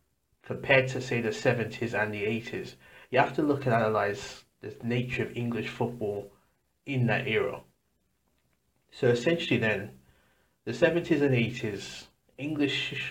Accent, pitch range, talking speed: British, 105-130 Hz, 135 wpm